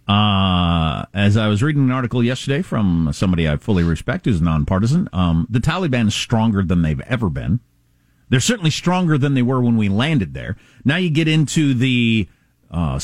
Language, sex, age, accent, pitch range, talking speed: English, male, 50-69, American, 115-190 Hz, 185 wpm